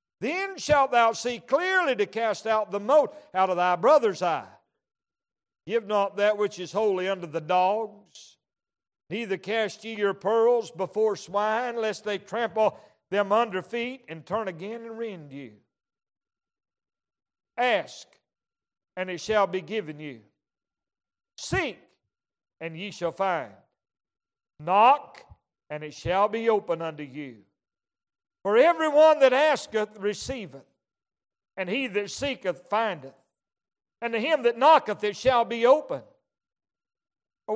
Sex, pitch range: male, 195-260 Hz